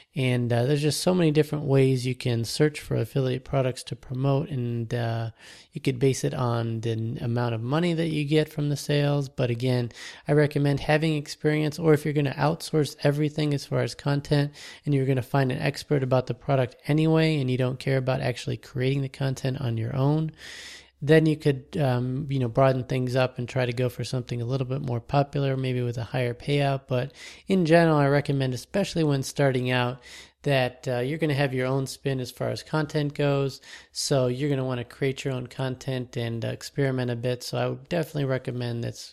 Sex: male